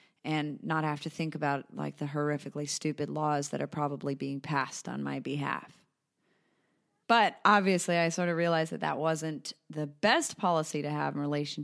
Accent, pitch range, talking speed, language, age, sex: American, 145-180 Hz, 180 wpm, English, 30-49, female